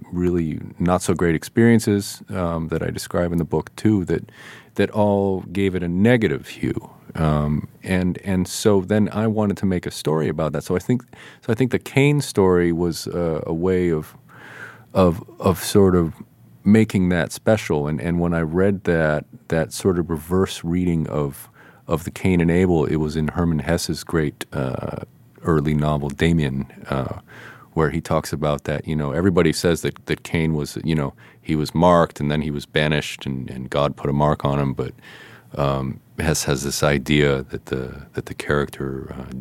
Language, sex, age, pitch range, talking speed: English, male, 40-59, 75-95 Hz, 190 wpm